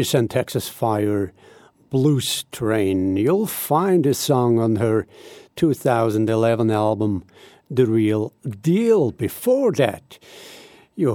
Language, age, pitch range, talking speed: English, 60-79, 105-140 Hz, 100 wpm